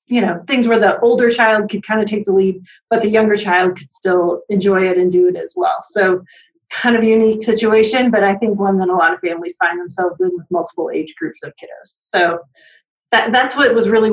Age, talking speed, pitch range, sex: 30-49, 235 wpm, 195-225 Hz, female